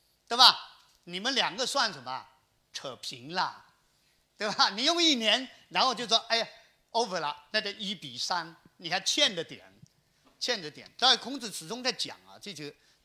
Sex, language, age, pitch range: male, Chinese, 50-69, 170-260 Hz